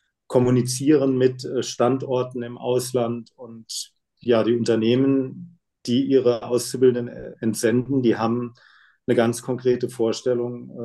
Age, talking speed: 40-59, 105 wpm